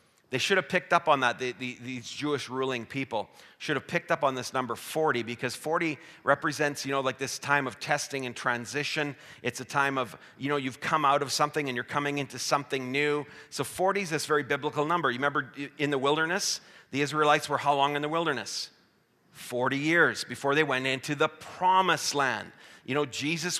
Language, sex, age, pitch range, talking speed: English, male, 40-59, 140-180 Hz, 205 wpm